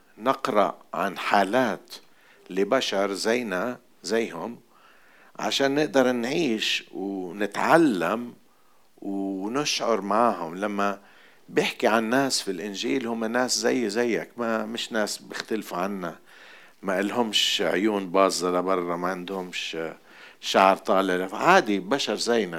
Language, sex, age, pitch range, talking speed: Arabic, male, 50-69, 95-115 Hz, 105 wpm